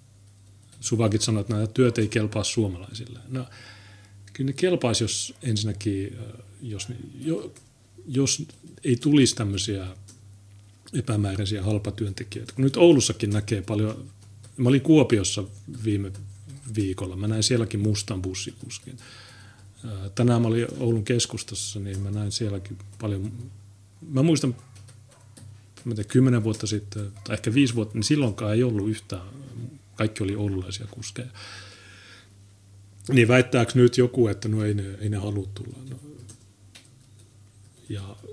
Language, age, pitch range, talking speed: Finnish, 30-49, 100-120 Hz, 115 wpm